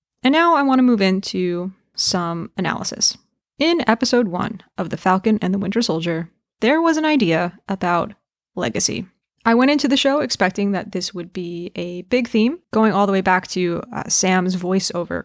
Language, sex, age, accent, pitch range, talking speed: English, female, 20-39, American, 175-230 Hz, 185 wpm